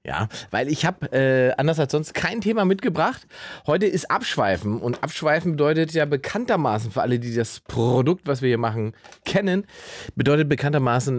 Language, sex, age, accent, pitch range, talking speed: German, male, 30-49, German, 110-155 Hz, 160 wpm